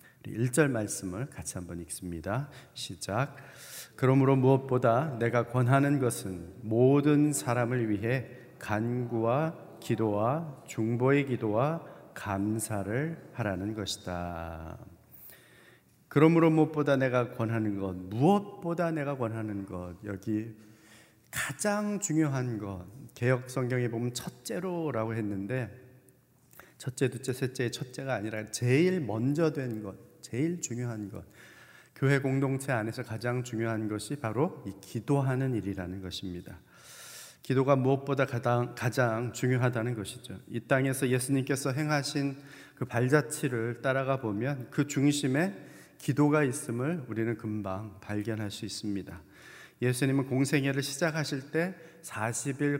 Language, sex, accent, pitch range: Korean, male, native, 110-140 Hz